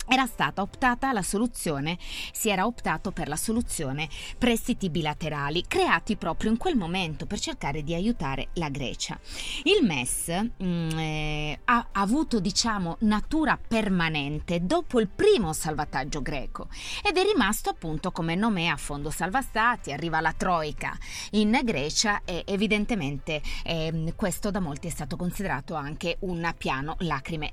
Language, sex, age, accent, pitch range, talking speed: Italian, female, 30-49, native, 160-215 Hz, 145 wpm